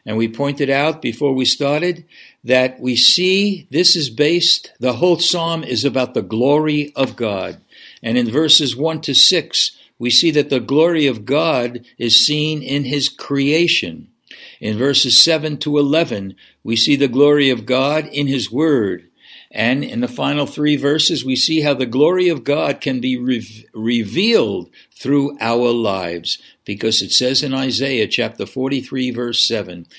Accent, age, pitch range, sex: American, 60-79, 120-150 Hz, male